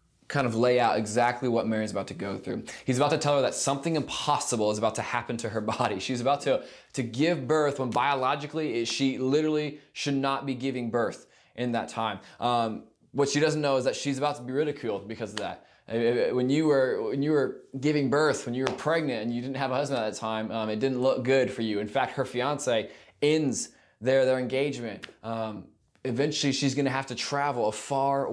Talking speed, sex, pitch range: 225 wpm, male, 115-145 Hz